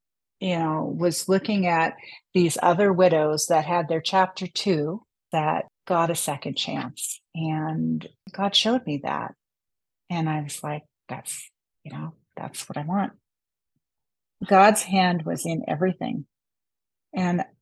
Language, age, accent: English, 40-59, American